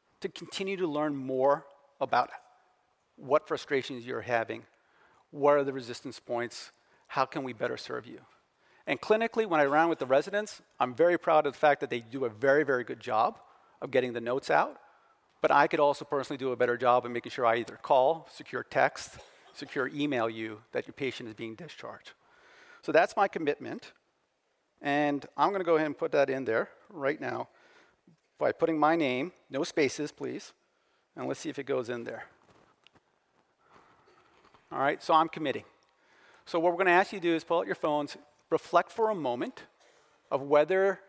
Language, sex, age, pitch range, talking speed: English, male, 40-59, 140-175 Hz, 190 wpm